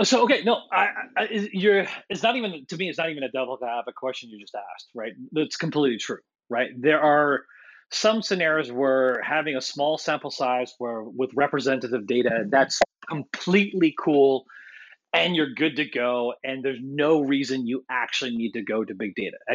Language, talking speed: English, 190 wpm